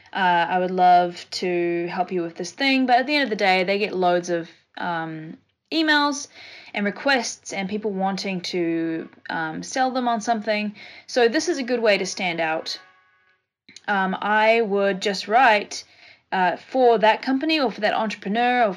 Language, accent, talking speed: English, Australian, 180 wpm